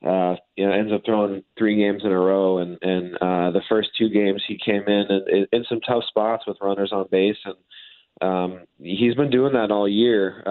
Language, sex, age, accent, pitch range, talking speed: English, male, 20-39, American, 90-105 Hz, 210 wpm